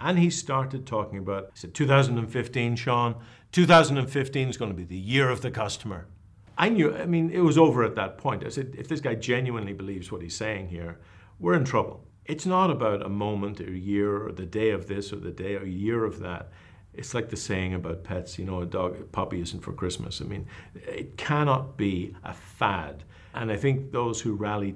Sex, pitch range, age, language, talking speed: male, 95-120 Hz, 50-69, English, 235 wpm